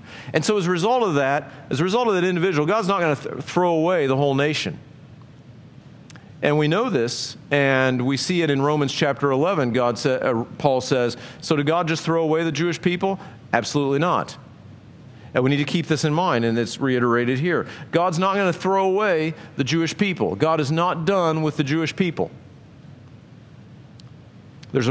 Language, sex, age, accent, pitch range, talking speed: English, male, 50-69, American, 120-155 Hz, 190 wpm